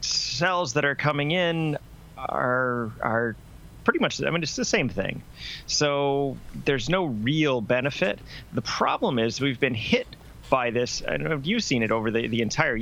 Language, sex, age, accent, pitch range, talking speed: English, male, 30-49, American, 110-145 Hz, 170 wpm